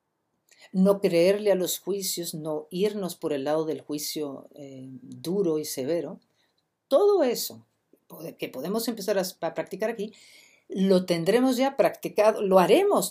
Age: 50-69